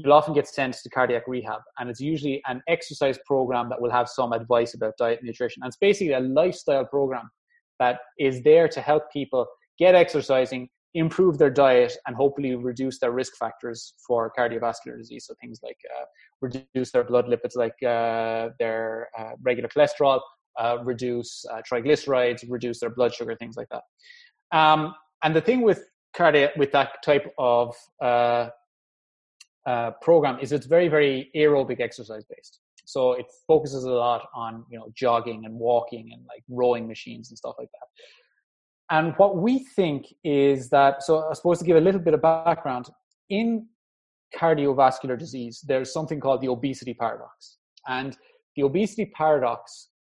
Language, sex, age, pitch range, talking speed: English, male, 20-39, 120-155 Hz, 170 wpm